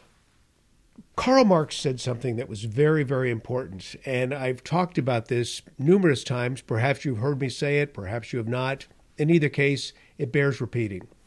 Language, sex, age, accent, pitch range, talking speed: English, male, 50-69, American, 115-165 Hz, 170 wpm